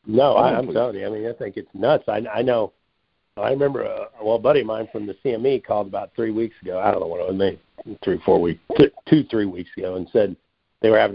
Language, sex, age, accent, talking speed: English, male, 50-69, American, 270 wpm